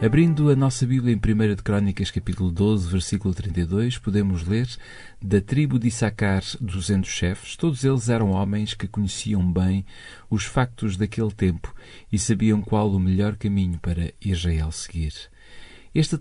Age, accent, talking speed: 40-59, Portuguese, 150 wpm